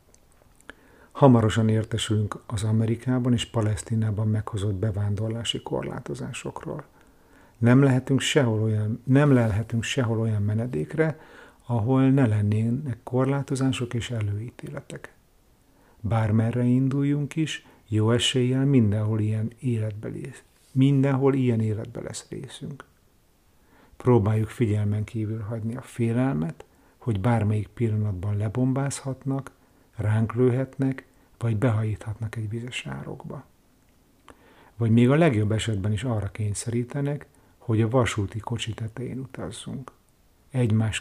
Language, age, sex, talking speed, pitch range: Hungarian, 50-69, male, 100 wpm, 105-125 Hz